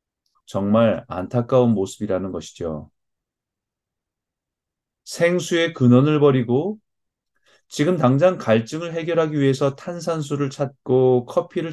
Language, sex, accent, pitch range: Korean, male, native, 110-150 Hz